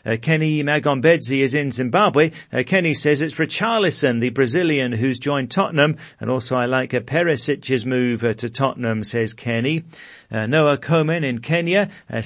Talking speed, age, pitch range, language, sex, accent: 160 wpm, 50-69, 125-150 Hz, English, male, British